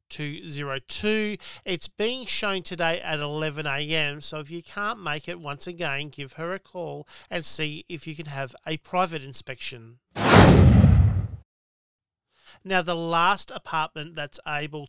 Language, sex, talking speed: English, male, 135 wpm